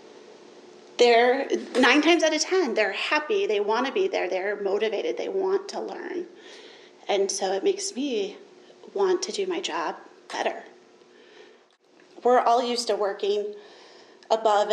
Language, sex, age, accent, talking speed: English, female, 30-49, American, 145 wpm